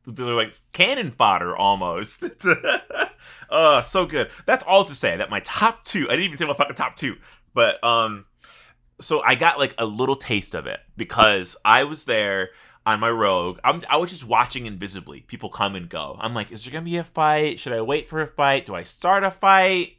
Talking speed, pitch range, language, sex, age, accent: 220 wpm, 110-165 Hz, English, male, 20-39, American